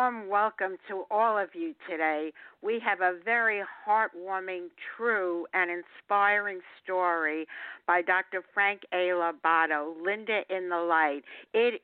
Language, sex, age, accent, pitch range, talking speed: English, female, 60-79, American, 180-225 Hz, 125 wpm